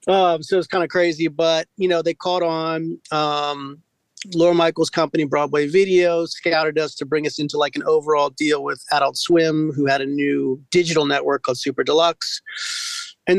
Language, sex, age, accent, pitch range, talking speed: English, male, 40-59, American, 150-175 Hz, 190 wpm